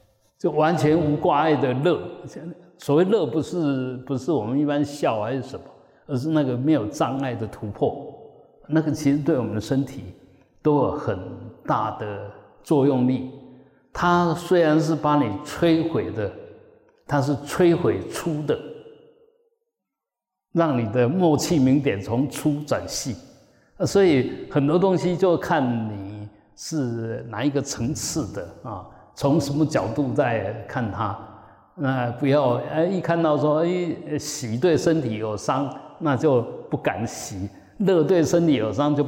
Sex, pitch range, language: male, 120-155 Hz, Chinese